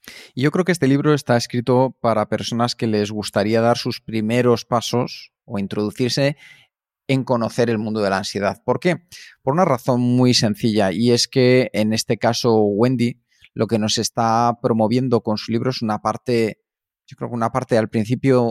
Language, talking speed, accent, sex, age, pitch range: Spanish, 185 wpm, Spanish, male, 30-49, 110-135 Hz